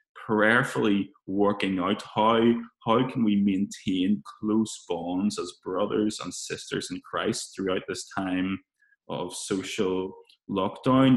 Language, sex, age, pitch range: English, male, 20-39, 100-140 Hz